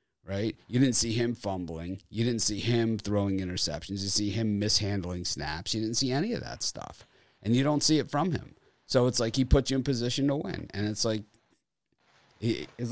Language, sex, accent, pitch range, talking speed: English, male, American, 95-125 Hz, 215 wpm